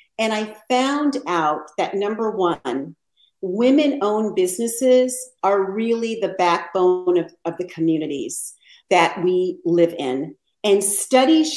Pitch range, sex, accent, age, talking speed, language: 180-255 Hz, female, American, 50-69, 120 wpm, English